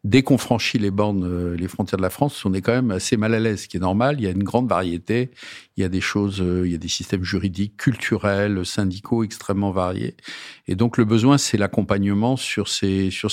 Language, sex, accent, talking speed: French, male, French, 235 wpm